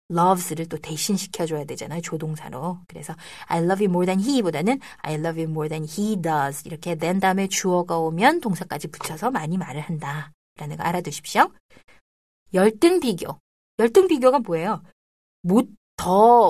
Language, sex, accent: Korean, female, native